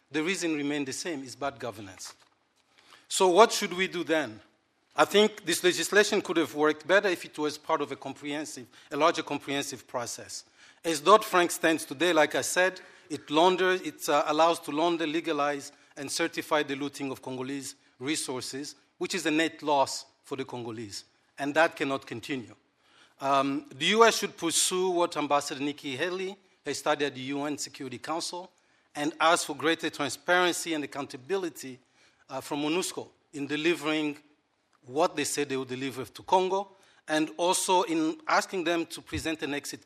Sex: male